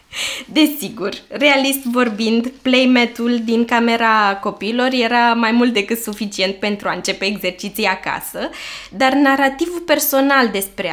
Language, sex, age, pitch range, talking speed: Romanian, female, 20-39, 195-255 Hz, 115 wpm